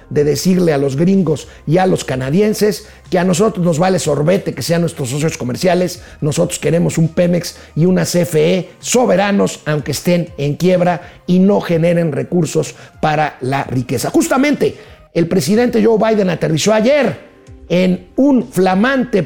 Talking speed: 155 wpm